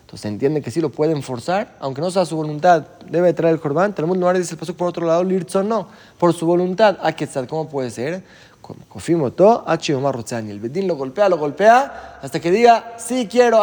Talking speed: 210 wpm